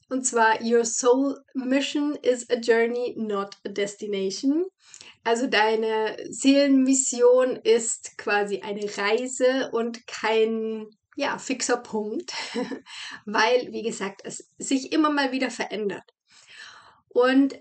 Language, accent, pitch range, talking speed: German, German, 225-275 Hz, 110 wpm